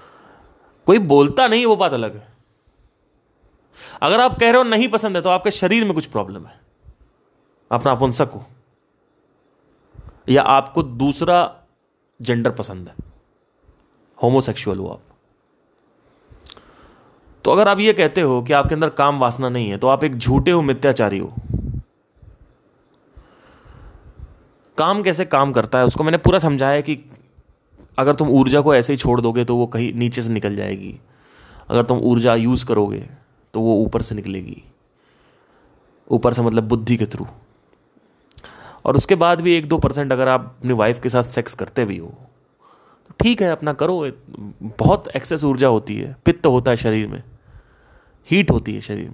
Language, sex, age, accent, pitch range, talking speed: Hindi, male, 30-49, native, 115-150 Hz, 160 wpm